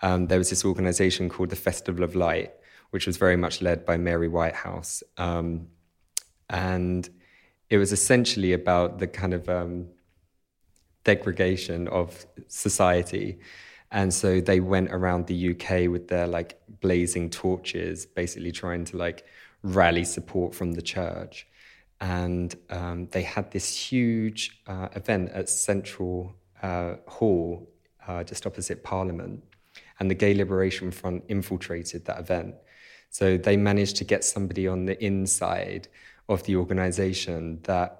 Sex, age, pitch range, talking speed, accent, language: male, 20-39, 90-100 Hz, 140 wpm, British, English